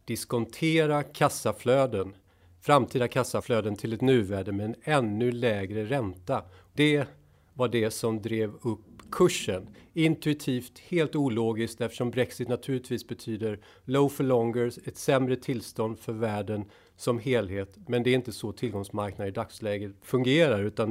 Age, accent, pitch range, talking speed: 40-59, native, 100-130 Hz, 130 wpm